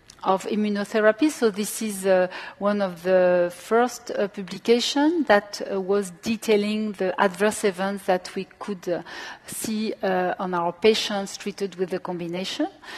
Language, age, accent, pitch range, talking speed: English, 40-59, French, 185-220 Hz, 150 wpm